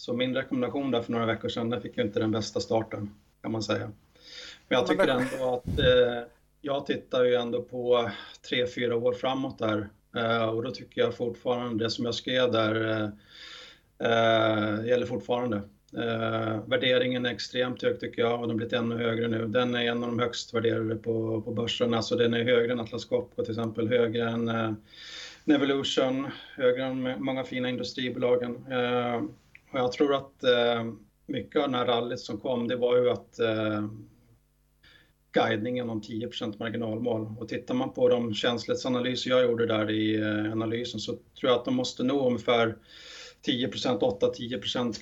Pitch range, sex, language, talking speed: 115-125 Hz, male, Swedish, 175 wpm